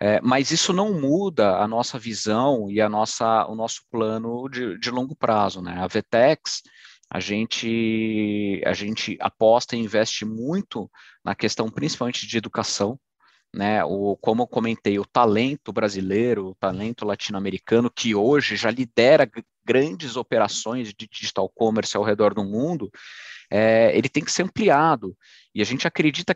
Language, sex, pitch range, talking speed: Portuguese, male, 105-130 Hz, 155 wpm